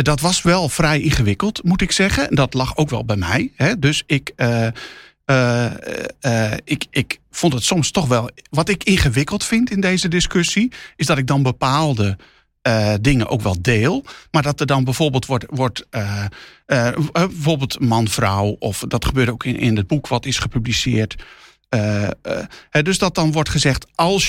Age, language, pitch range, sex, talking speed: 50-69, Dutch, 115-160 Hz, male, 175 wpm